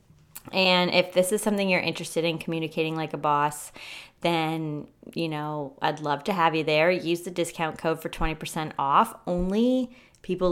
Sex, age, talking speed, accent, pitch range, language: female, 20-39, 170 wpm, American, 155-195 Hz, English